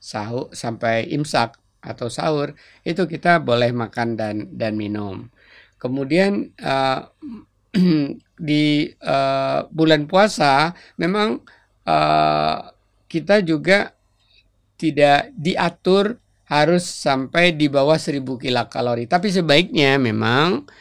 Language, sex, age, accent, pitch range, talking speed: Indonesian, male, 50-69, native, 120-155 Hz, 95 wpm